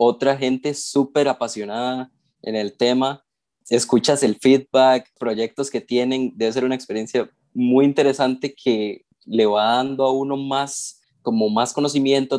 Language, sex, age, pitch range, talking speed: Spanish, male, 20-39, 115-140 Hz, 140 wpm